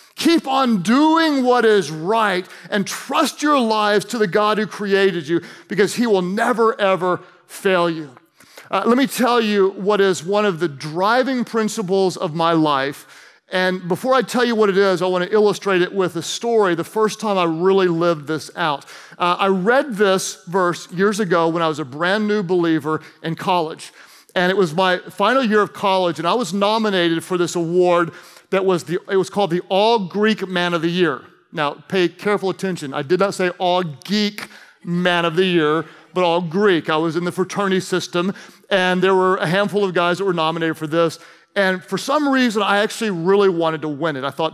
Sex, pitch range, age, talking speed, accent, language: male, 175-210 Hz, 40-59, 205 wpm, American, English